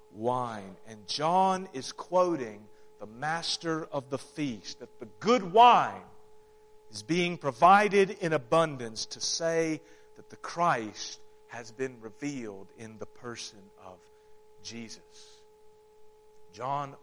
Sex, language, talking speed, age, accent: male, English, 115 wpm, 40-59, American